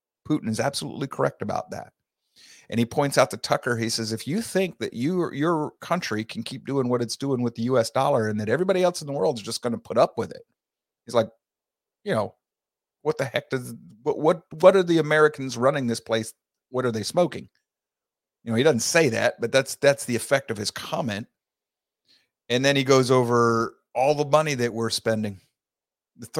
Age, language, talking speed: 50-69, English, 210 wpm